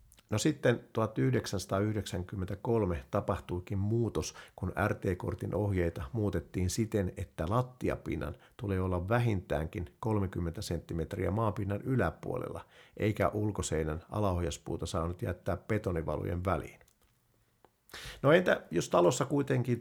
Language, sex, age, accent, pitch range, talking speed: Finnish, male, 50-69, native, 90-110 Hz, 95 wpm